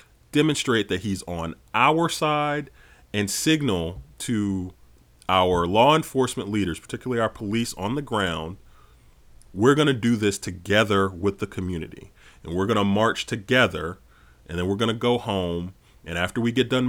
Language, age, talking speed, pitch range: English, 30-49, 165 wpm, 90-120 Hz